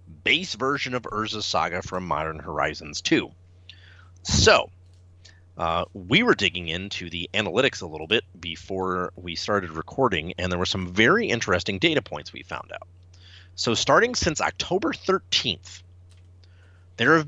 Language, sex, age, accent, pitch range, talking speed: English, male, 30-49, American, 90-115 Hz, 145 wpm